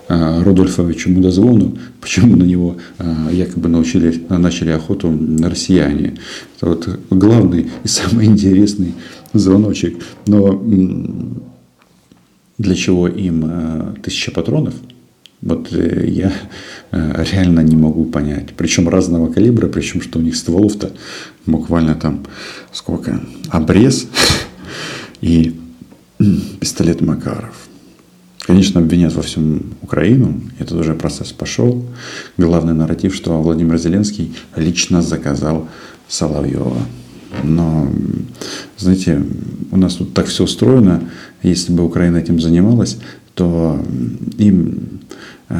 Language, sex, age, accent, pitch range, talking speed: Russian, male, 50-69, native, 80-95 Hz, 100 wpm